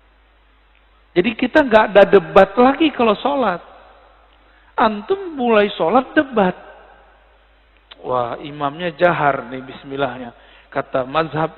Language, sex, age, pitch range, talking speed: Malay, male, 50-69, 150-200 Hz, 100 wpm